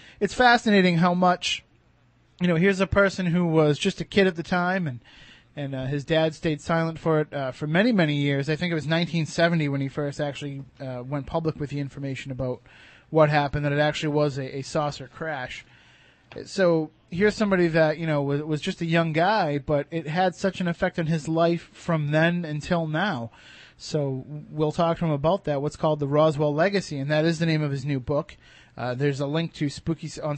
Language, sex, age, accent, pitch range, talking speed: English, male, 30-49, American, 145-170 Hz, 215 wpm